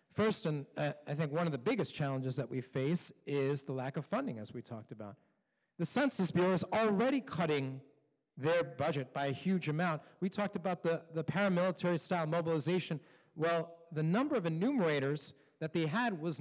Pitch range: 145-195 Hz